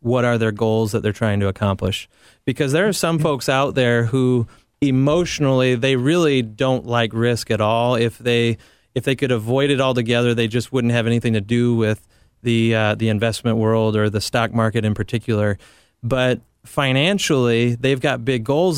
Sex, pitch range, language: male, 115-135 Hz, English